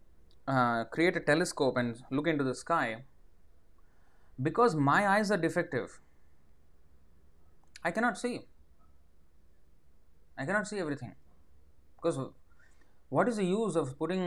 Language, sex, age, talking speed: English, male, 20-39, 120 wpm